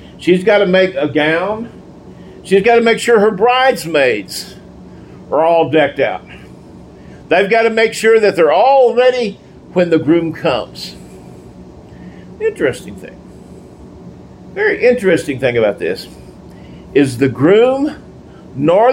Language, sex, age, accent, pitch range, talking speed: English, male, 50-69, American, 150-225 Hz, 130 wpm